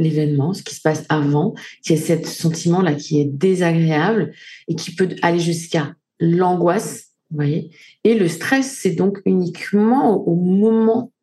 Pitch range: 165-220 Hz